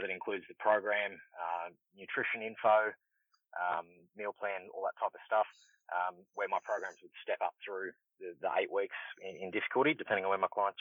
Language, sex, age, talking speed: English, male, 20-39, 195 wpm